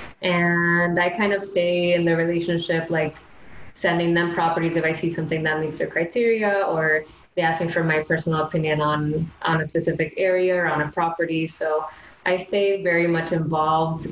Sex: female